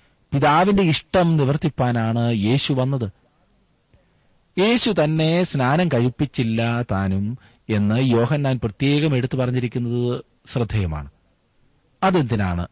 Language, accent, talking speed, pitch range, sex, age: Malayalam, native, 85 wpm, 100-135 Hz, male, 30-49